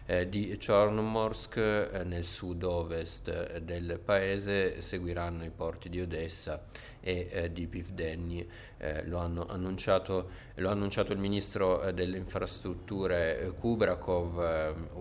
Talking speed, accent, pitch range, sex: 130 wpm, native, 85-95 Hz, male